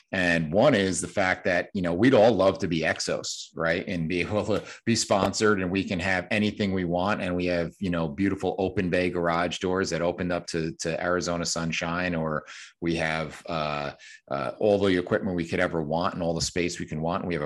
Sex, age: male, 40-59